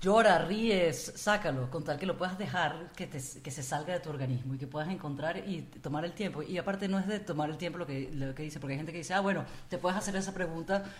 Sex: female